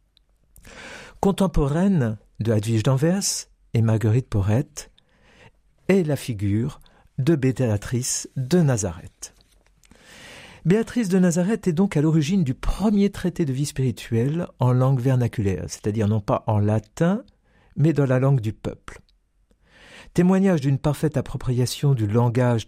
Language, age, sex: French, 60-79, male